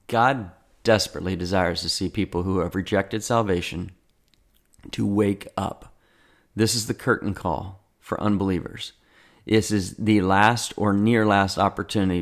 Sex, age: male, 40-59